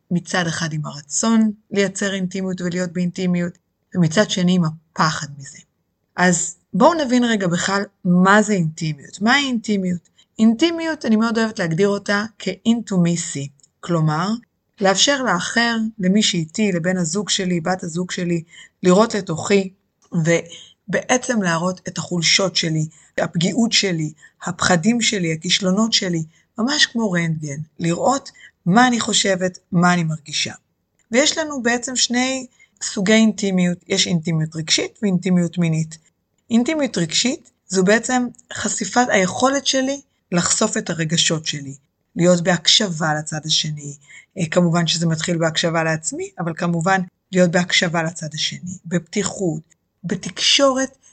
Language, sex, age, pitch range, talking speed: Hebrew, female, 20-39, 170-220 Hz, 120 wpm